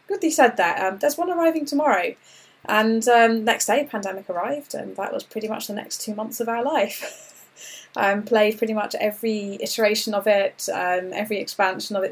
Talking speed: 195 wpm